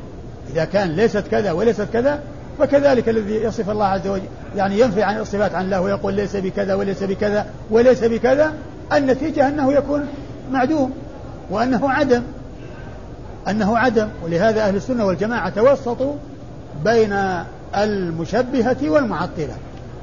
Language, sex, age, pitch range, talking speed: Arabic, male, 50-69, 200-250 Hz, 125 wpm